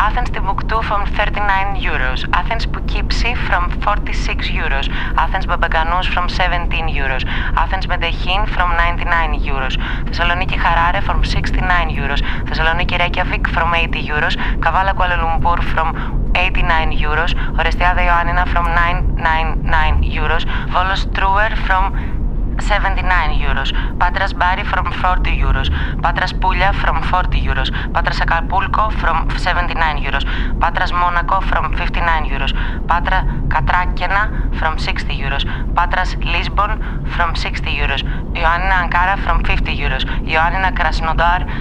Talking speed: 110 wpm